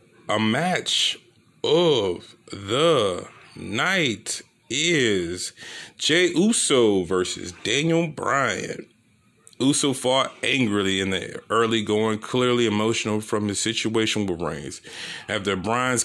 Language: English